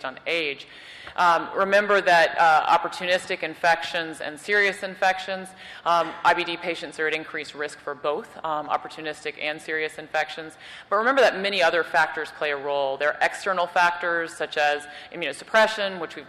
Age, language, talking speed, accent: 30-49, English, 160 wpm, American